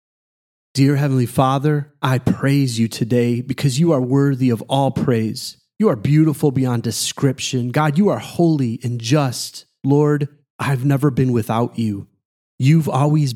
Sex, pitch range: male, 125-155 Hz